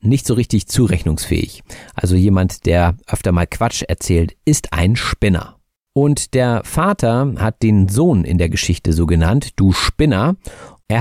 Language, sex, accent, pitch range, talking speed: German, male, German, 90-120 Hz, 155 wpm